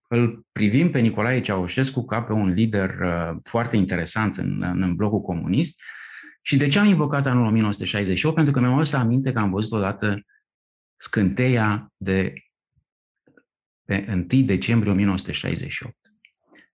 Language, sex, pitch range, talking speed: Romanian, male, 95-125 Hz, 135 wpm